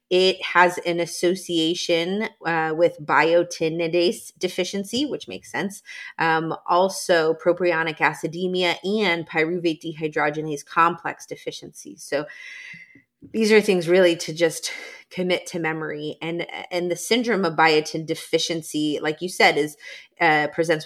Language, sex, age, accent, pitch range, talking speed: English, female, 30-49, American, 160-185 Hz, 125 wpm